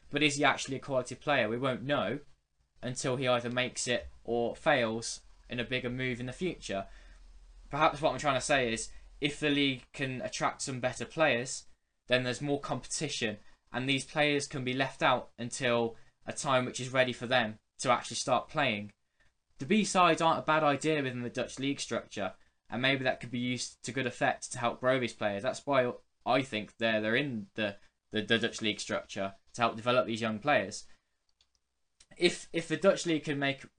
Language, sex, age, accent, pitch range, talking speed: English, male, 10-29, British, 110-145 Hz, 195 wpm